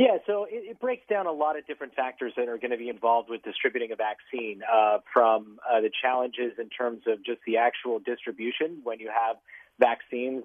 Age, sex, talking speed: 40-59, male, 210 wpm